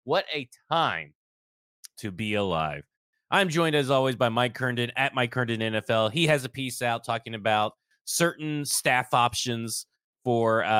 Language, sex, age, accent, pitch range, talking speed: English, male, 30-49, American, 110-135 Hz, 155 wpm